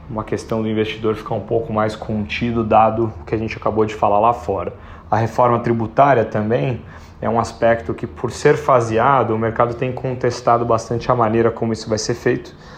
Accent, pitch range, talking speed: Brazilian, 110-125 Hz, 195 wpm